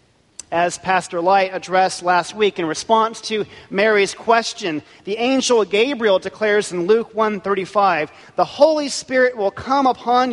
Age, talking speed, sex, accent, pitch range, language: 40-59, 140 wpm, male, American, 170-225 Hz, English